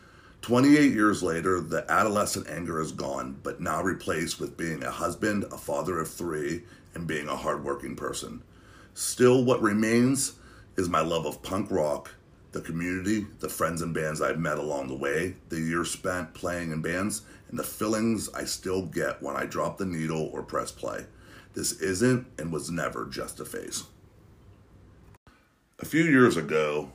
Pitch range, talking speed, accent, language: 80-105 Hz, 170 wpm, American, English